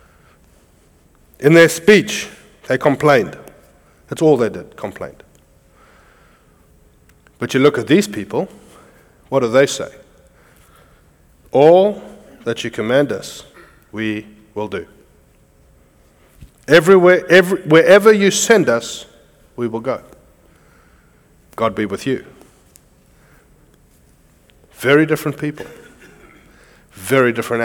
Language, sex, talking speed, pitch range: English, male, 95 wpm, 95-145 Hz